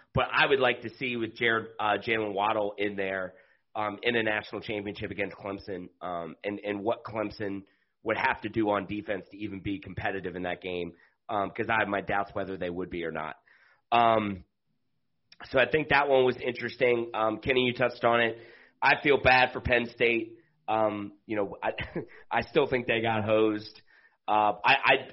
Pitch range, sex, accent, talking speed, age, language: 100-120 Hz, male, American, 195 wpm, 30-49, English